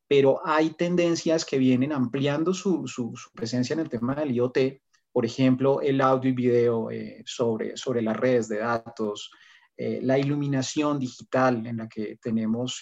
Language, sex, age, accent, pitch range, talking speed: Spanish, male, 30-49, Colombian, 125-145 Hz, 170 wpm